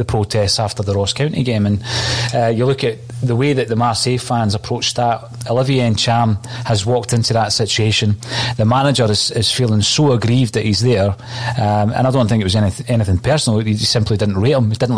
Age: 30-49